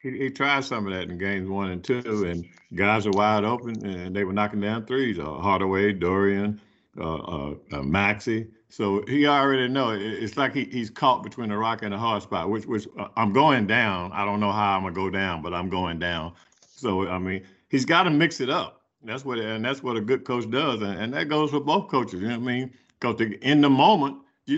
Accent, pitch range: American, 100-135 Hz